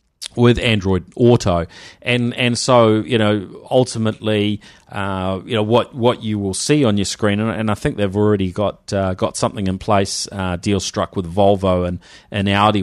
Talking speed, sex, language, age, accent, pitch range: 185 wpm, male, English, 40-59, Australian, 95-110 Hz